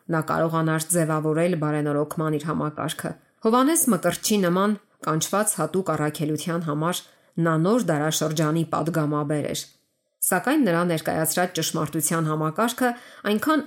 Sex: female